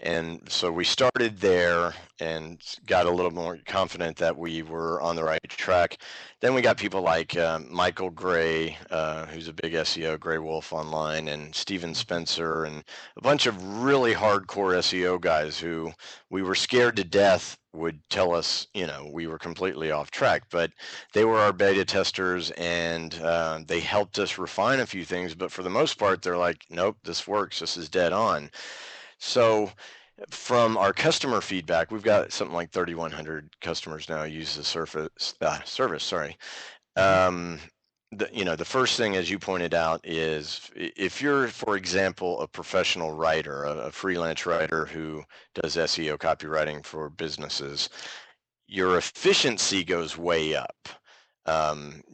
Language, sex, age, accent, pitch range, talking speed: English, male, 40-59, American, 80-95 Hz, 165 wpm